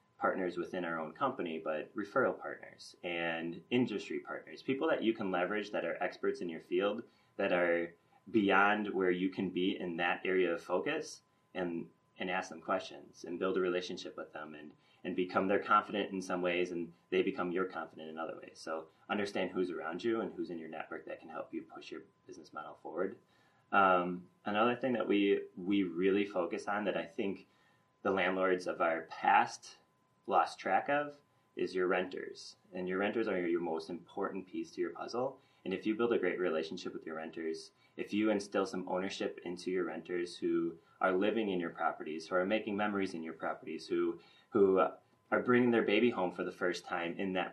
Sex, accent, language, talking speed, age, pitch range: male, American, English, 200 wpm, 30-49, 90-115 Hz